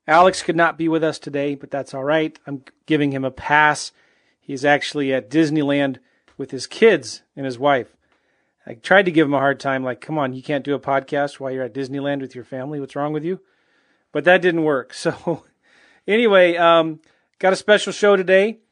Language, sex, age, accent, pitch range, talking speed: English, male, 40-59, American, 140-170 Hz, 205 wpm